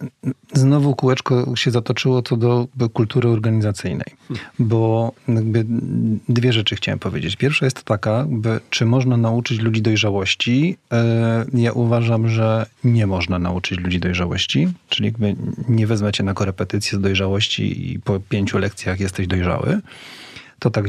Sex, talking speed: male, 135 wpm